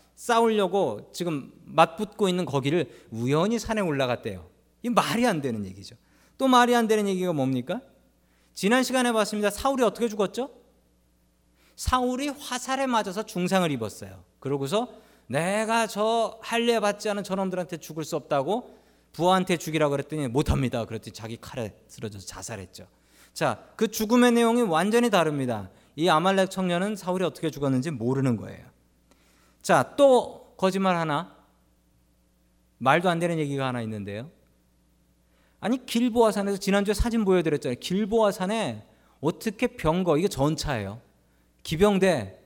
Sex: male